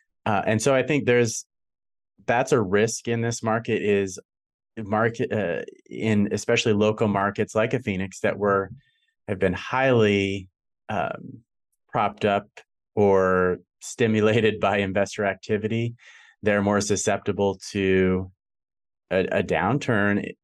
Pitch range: 100-120 Hz